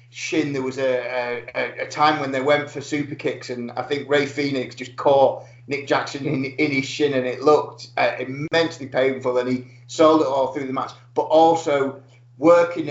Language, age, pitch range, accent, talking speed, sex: English, 30-49, 125-145 Hz, British, 200 wpm, male